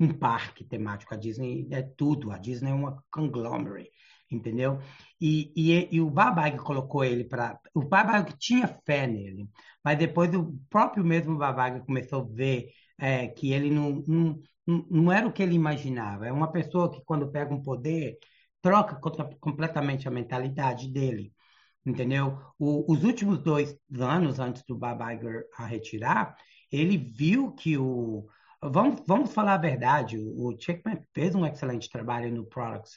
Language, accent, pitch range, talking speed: Portuguese, Brazilian, 120-160 Hz, 160 wpm